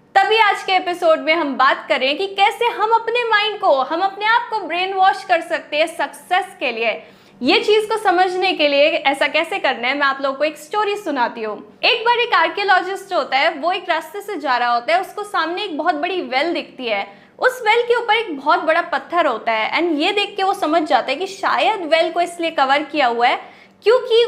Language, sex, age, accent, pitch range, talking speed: Hindi, female, 20-39, native, 290-410 Hz, 145 wpm